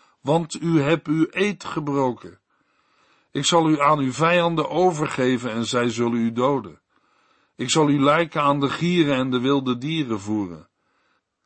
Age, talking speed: 50-69, 155 wpm